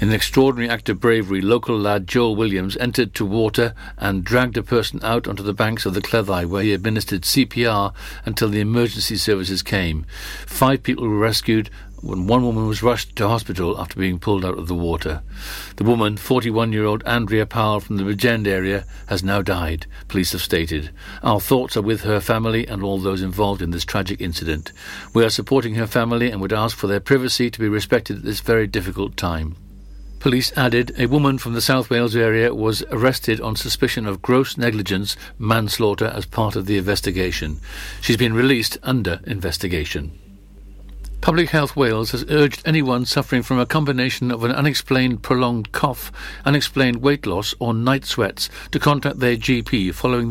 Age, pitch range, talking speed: 60-79, 100-125 Hz, 180 wpm